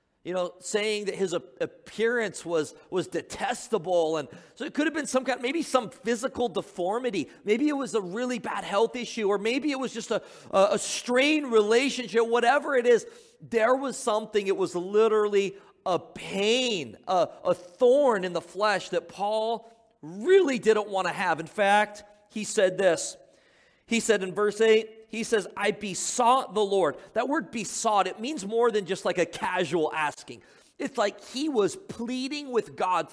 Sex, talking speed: male, 175 wpm